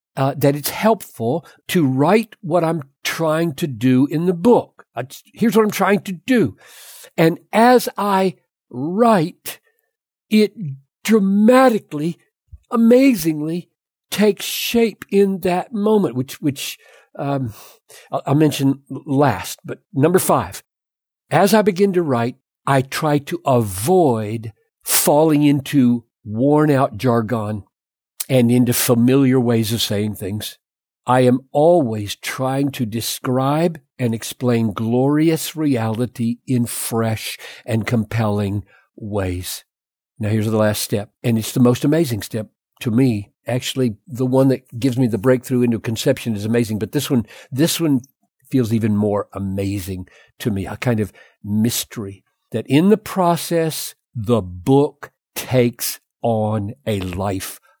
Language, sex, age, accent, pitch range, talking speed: English, male, 60-79, American, 115-165 Hz, 135 wpm